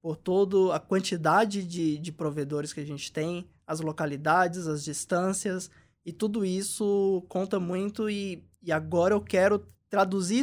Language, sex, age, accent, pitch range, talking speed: Portuguese, male, 20-39, Brazilian, 155-190 Hz, 150 wpm